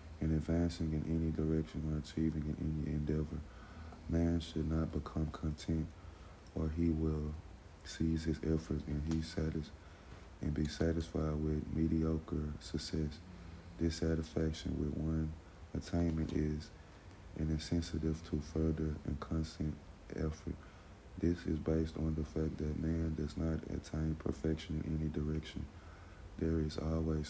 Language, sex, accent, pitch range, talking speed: English, male, American, 75-85 Hz, 130 wpm